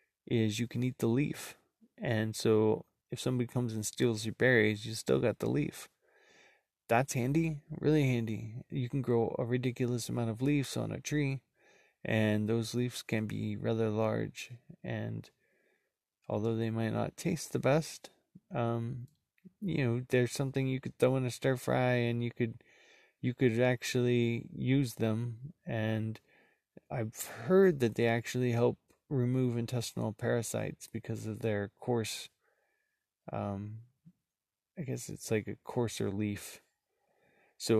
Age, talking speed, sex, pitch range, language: 20-39, 150 wpm, male, 110-135 Hz, English